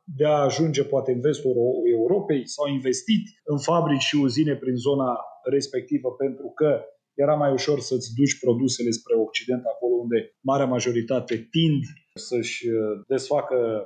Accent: native